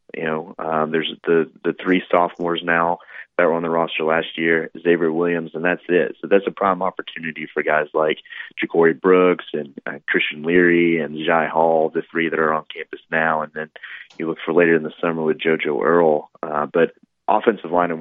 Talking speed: 205 wpm